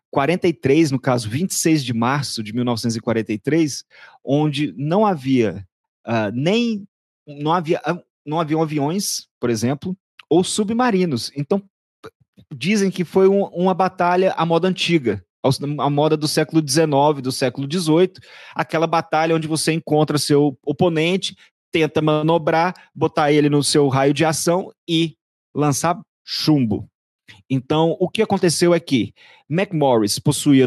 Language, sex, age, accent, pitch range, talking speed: Portuguese, male, 30-49, Brazilian, 130-170 Hz, 120 wpm